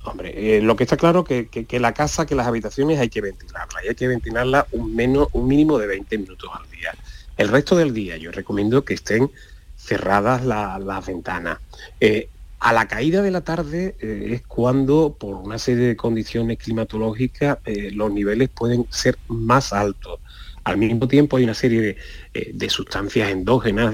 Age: 30-49